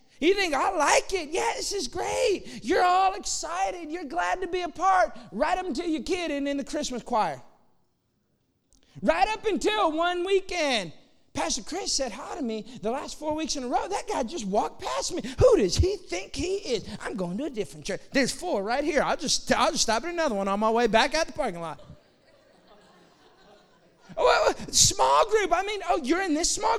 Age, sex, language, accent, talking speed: 30-49, male, English, American, 210 wpm